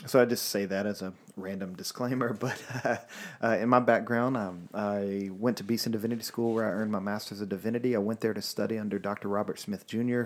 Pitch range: 100-115 Hz